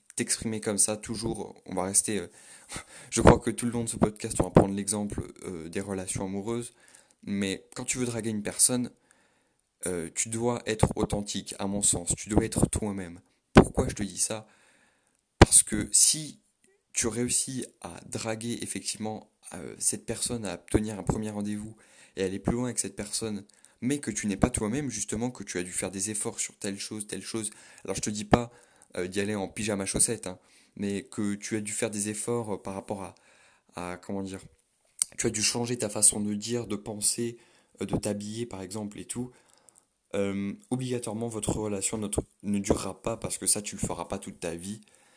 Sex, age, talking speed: male, 20-39, 200 wpm